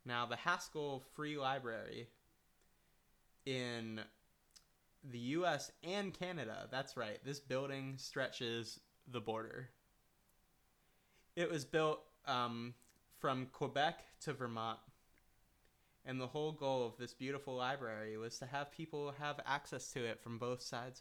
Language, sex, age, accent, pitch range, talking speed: English, male, 20-39, American, 115-140 Hz, 125 wpm